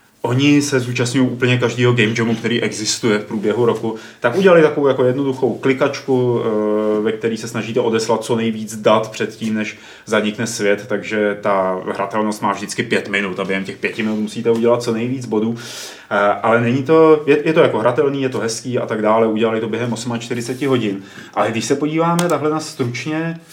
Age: 30-49